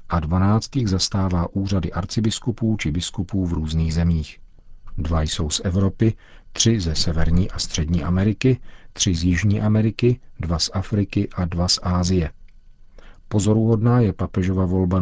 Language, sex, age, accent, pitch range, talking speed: Czech, male, 40-59, native, 85-100 Hz, 140 wpm